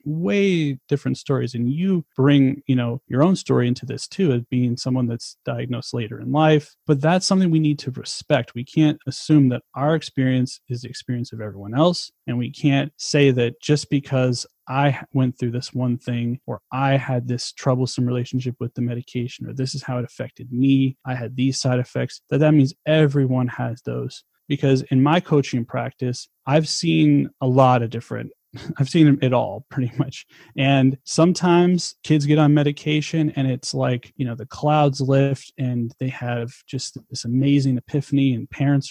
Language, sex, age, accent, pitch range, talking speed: English, male, 30-49, American, 125-150 Hz, 190 wpm